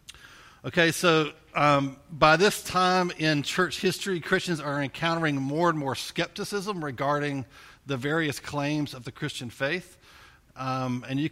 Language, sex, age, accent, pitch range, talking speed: English, male, 50-69, American, 130-160 Hz, 145 wpm